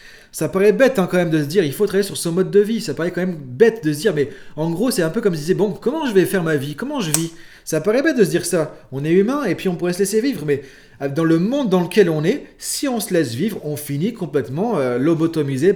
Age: 30-49